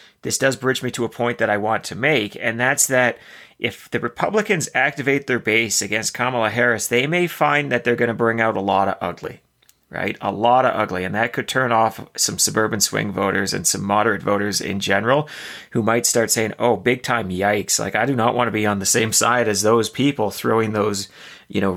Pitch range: 105-125 Hz